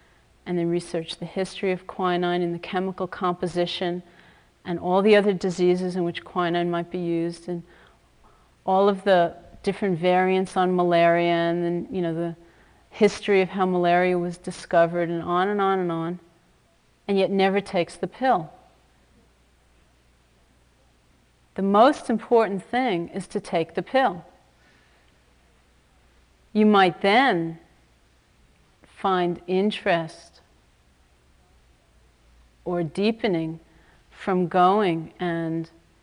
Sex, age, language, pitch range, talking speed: female, 40-59, English, 155-195 Hz, 120 wpm